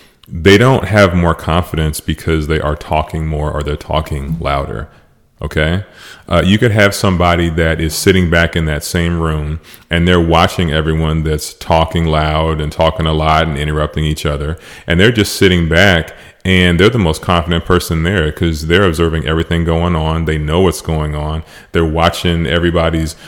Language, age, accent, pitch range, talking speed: English, 30-49, American, 80-95 Hz, 180 wpm